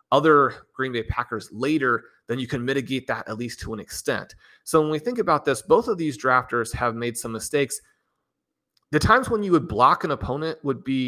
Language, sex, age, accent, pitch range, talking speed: English, male, 30-49, American, 110-135 Hz, 210 wpm